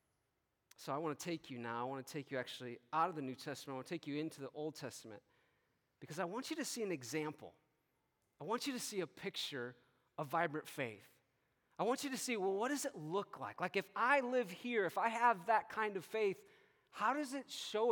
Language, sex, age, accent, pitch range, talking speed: English, male, 30-49, American, 155-215 Hz, 240 wpm